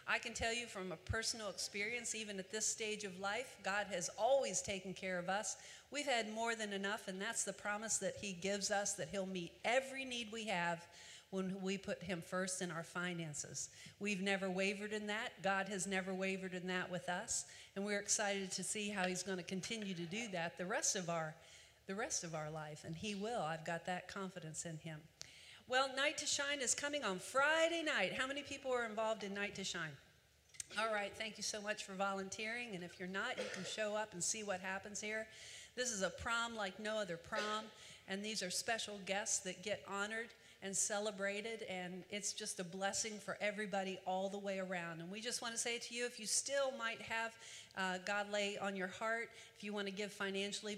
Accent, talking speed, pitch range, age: American, 220 wpm, 185-220 Hz, 50-69